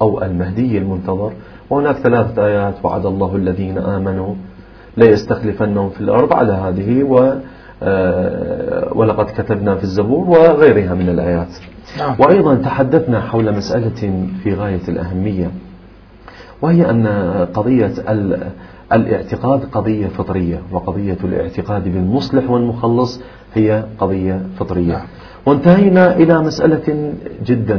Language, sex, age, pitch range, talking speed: Arabic, male, 40-59, 95-125 Hz, 100 wpm